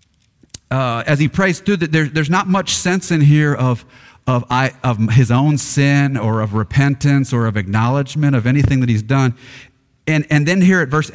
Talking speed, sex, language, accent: 195 wpm, male, English, American